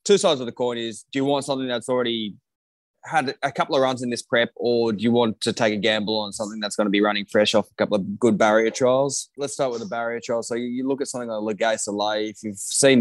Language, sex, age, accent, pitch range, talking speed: English, male, 20-39, Australian, 105-125 Hz, 270 wpm